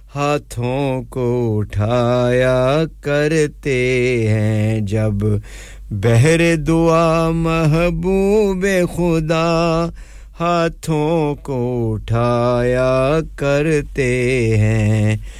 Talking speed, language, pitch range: 60 wpm, English, 125-175 Hz